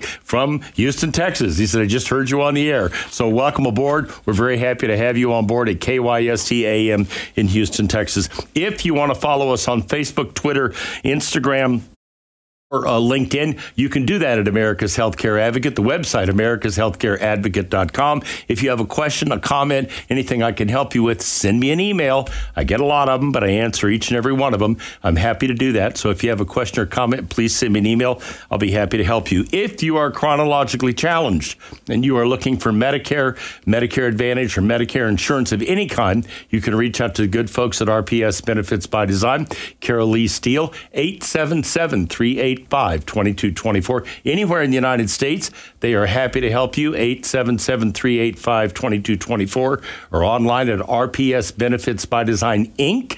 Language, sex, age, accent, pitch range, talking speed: English, male, 60-79, American, 110-135 Hz, 195 wpm